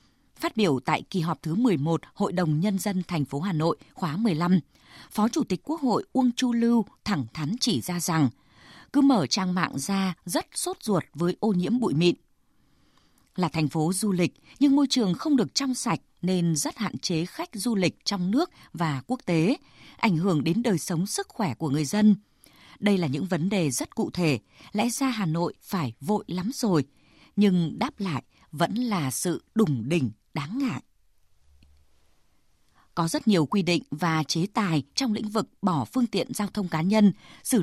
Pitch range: 165-230 Hz